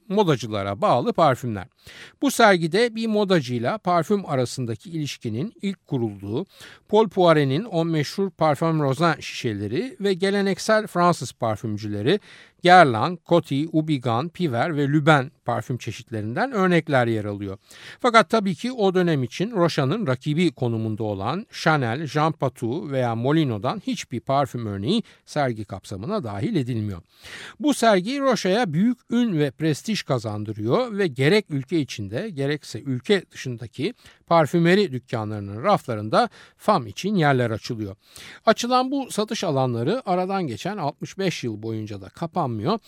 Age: 60-79